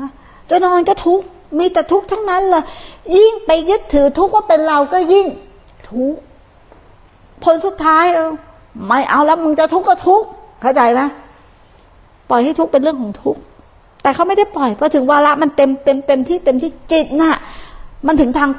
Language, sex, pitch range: Thai, female, 260-340 Hz